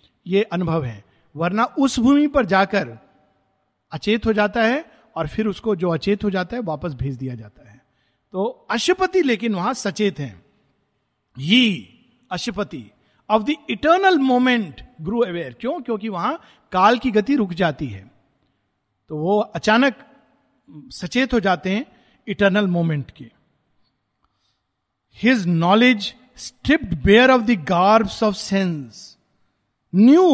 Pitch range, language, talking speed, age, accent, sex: 150-245 Hz, Hindi, 135 wpm, 50-69, native, male